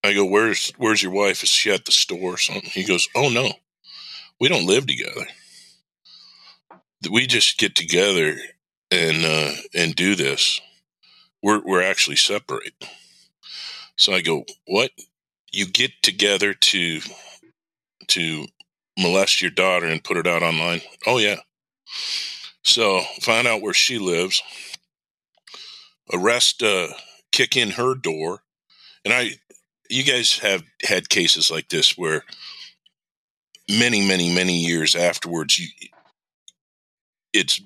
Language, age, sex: English, 50-69, male